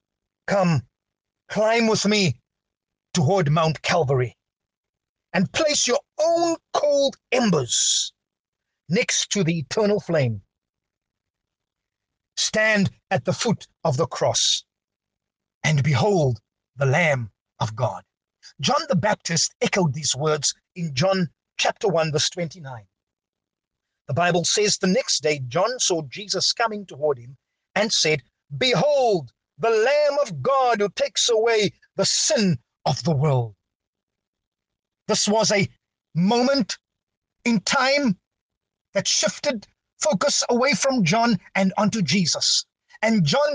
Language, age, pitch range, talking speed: English, 50-69, 135-225 Hz, 120 wpm